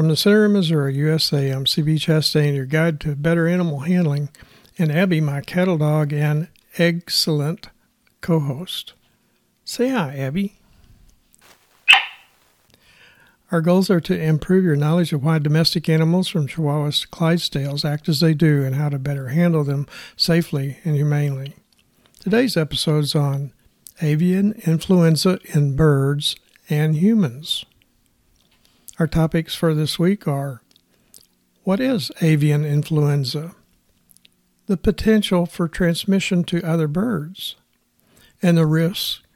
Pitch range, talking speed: 145-175 Hz, 130 wpm